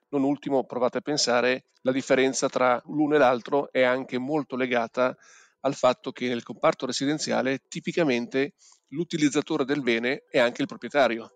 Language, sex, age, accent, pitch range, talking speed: Italian, male, 40-59, native, 125-145 Hz, 150 wpm